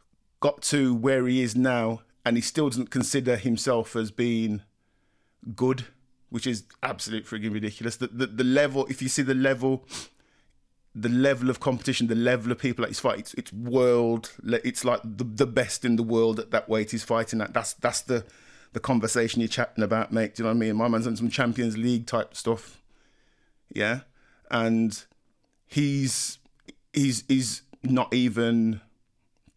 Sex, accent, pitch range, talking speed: male, British, 115-130 Hz, 175 wpm